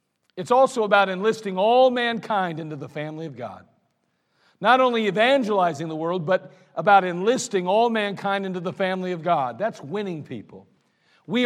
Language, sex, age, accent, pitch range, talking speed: English, male, 50-69, American, 165-210 Hz, 155 wpm